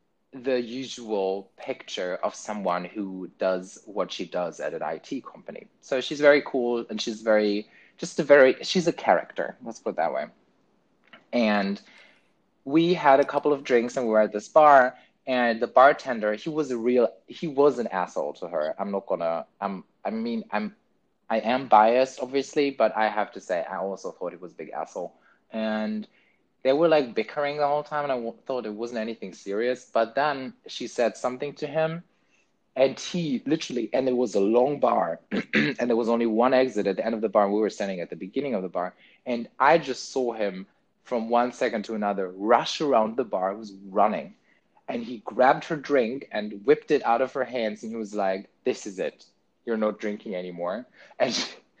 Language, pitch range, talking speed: English, 105-135 Hz, 205 wpm